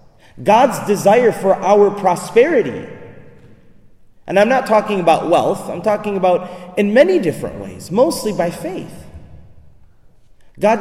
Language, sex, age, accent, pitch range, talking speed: English, male, 30-49, American, 155-220 Hz, 120 wpm